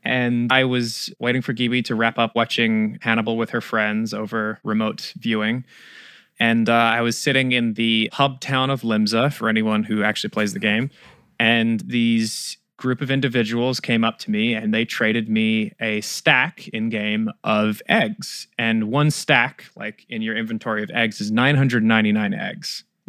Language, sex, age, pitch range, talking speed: English, male, 20-39, 110-140 Hz, 170 wpm